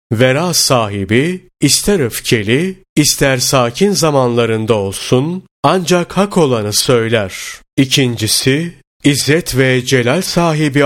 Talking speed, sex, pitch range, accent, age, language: 95 wpm, male, 115-150 Hz, native, 30-49, Turkish